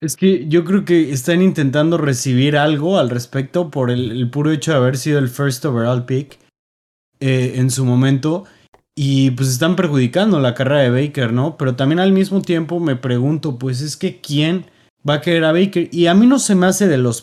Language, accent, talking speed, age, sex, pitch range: Spanish, Mexican, 215 wpm, 20-39, male, 130-165 Hz